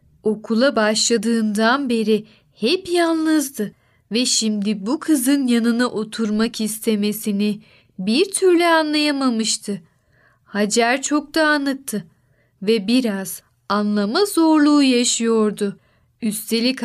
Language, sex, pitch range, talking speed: Turkish, female, 210-275 Hz, 90 wpm